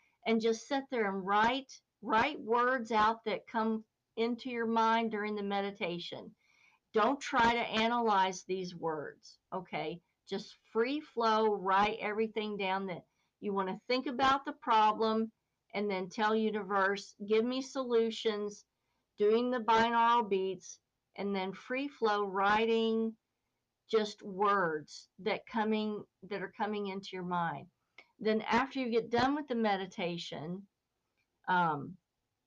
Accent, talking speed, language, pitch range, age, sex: American, 135 wpm, English, 195-230 Hz, 50-69, female